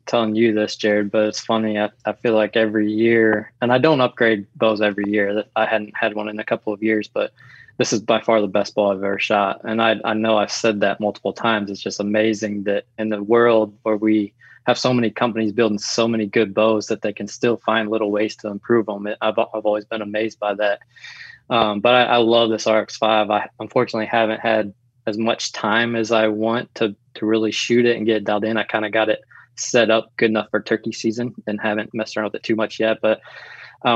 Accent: American